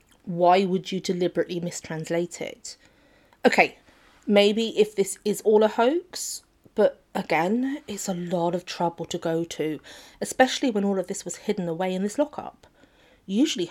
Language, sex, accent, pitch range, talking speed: English, female, British, 170-225 Hz, 160 wpm